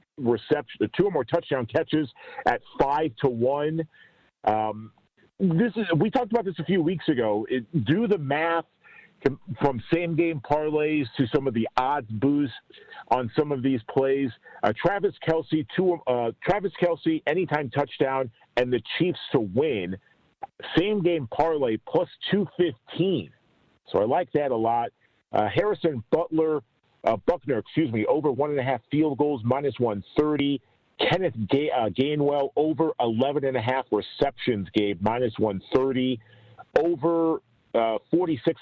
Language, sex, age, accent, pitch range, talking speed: English, male, 50-69, American, 120-165 Hz, 150 wpm